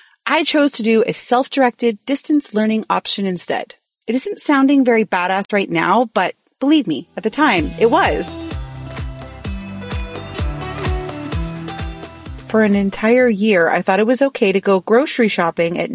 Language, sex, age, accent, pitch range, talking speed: English, female, 30-49, American, 185-255 Hz, 145 wpm